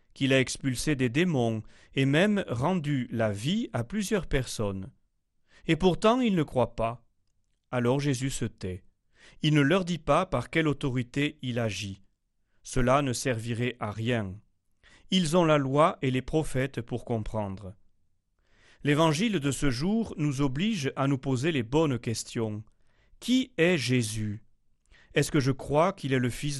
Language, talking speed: French, 160 wpm